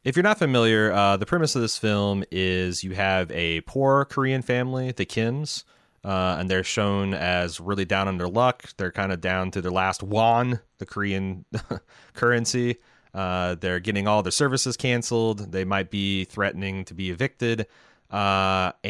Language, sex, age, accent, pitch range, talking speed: English, male, 30-49, American, 90-115 Hz, 175 wpm